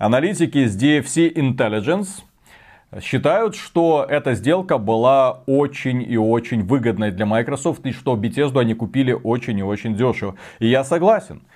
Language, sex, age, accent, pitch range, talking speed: Russian, male, 30-49, native, 120-170 Hz, 140 wpm